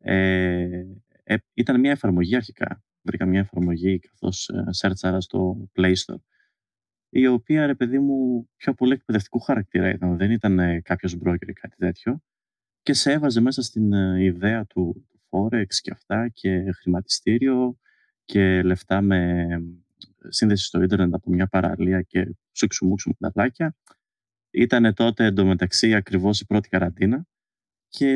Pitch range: 90-125 Hz